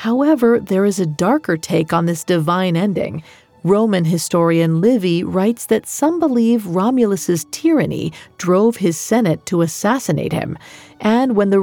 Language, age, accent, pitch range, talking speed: English, 40-59, American, 165-230 Hz, 145 wpm